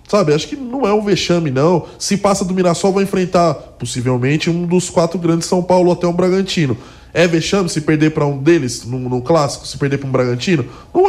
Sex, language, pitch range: male, English, 135-175 Hz